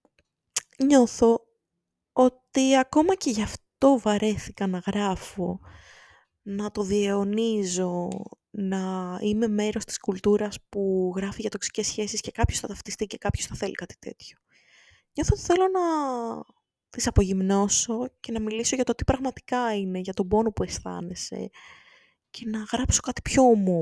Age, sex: 20-39, female